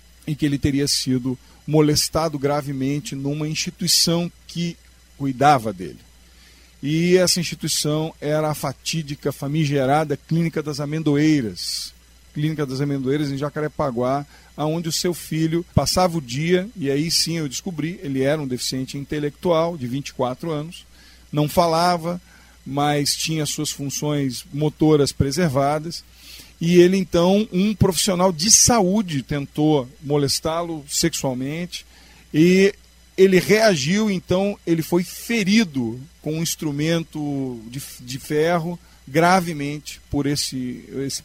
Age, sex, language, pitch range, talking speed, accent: 40-59, male, English, 135-170 Hz, 120 wpm, Brazilian